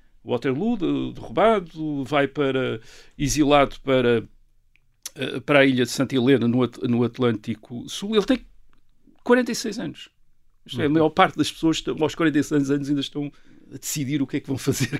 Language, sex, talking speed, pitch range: Portuguese, male, 155 wpm, 130-170 Hz